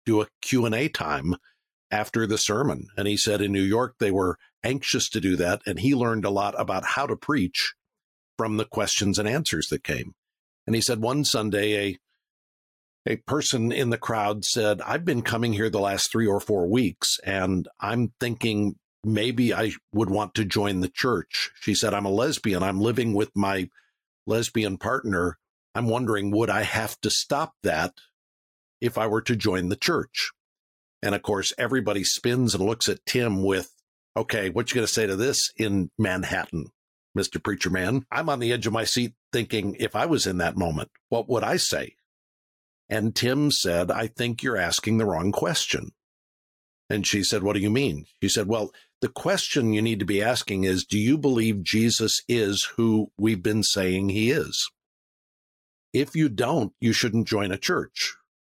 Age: 50-69